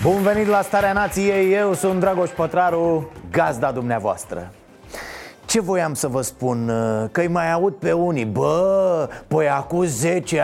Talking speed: 145 wpm